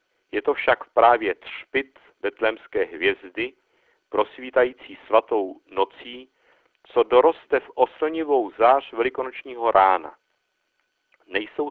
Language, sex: Czech, male